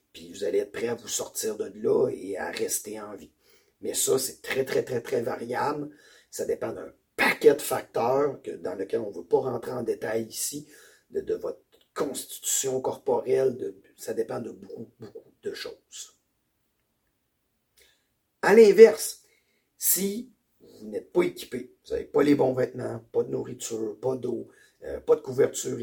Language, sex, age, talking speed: French, male, 50-69, 170 wpm